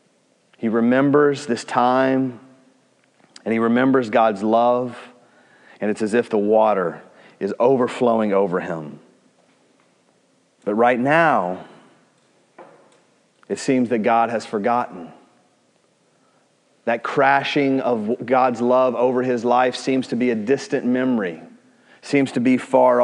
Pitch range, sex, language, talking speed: 105-130 Hz, male, English, 120 wpm